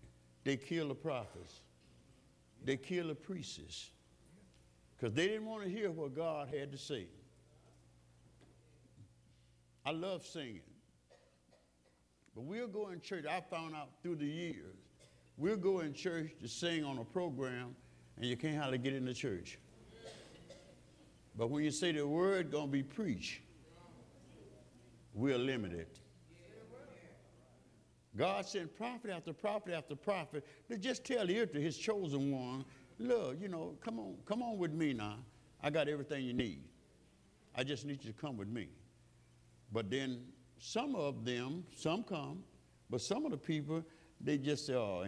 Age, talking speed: 60-79, 155 wpm